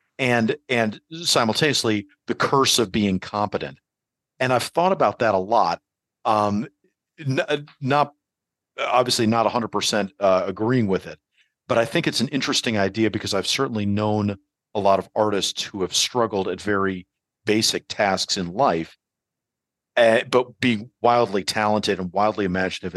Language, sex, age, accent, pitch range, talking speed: English, male, 40-59, American, 95-120 Hz, 150 wpm